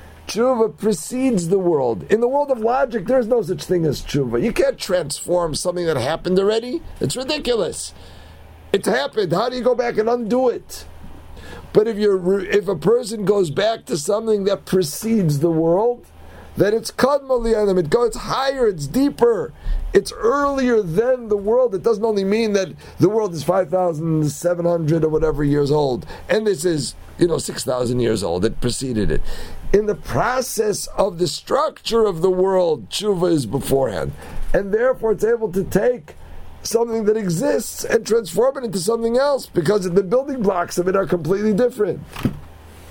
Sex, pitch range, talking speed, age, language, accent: male, 150-225 Hz, 170 wpm, 50-69, English, American